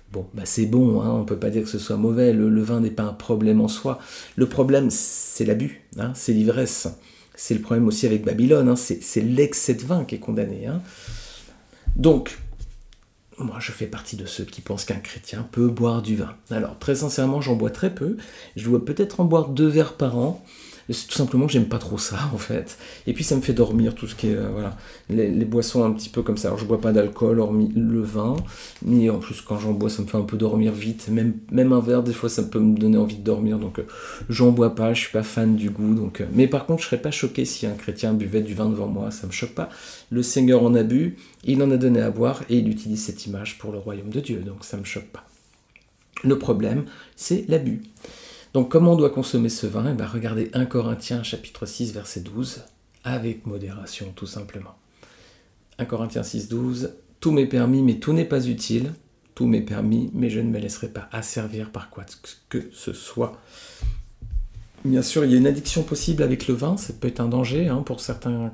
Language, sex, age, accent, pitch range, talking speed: French, male, 50-69, French, 110-130 Hz, 235 wpm